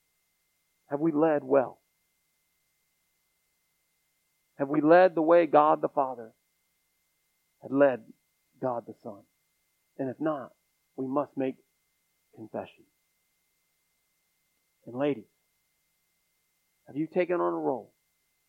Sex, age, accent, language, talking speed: male, 50-69, American, English, 105 wpm